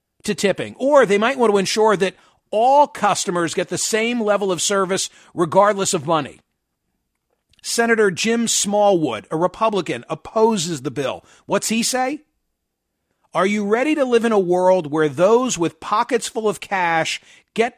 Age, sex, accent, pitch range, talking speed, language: 50-69, male, American, 175-225 Hz, 160 wpm, English